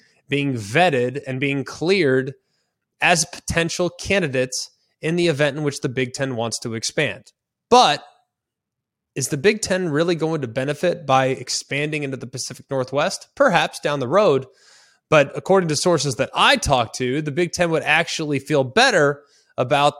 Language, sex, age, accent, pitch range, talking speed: English, male, 20-39, American, 130-170 Hz, 160 wpm